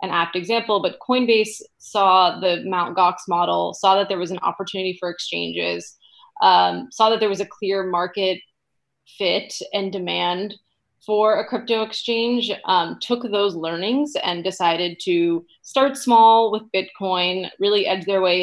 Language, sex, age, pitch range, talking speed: English, female, 20-39, 175-205 Hz, 155 wpm